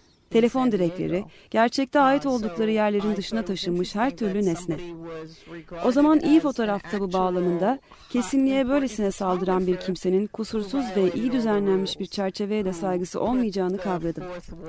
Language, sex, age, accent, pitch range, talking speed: Turkish, female, 30-49, native, 180-245 Hz, 130 wpm